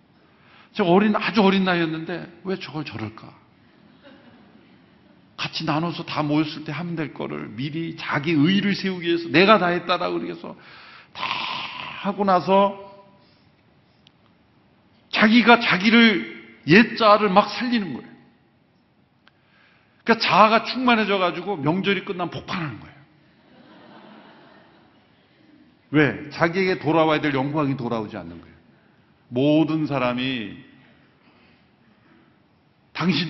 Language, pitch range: Korean, 140-185 Hz